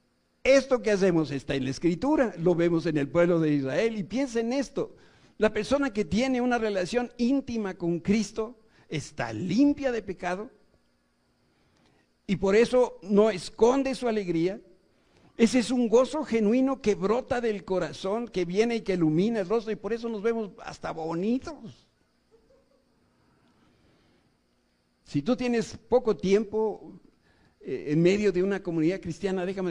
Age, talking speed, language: 60-79, 145 wpm, Spanish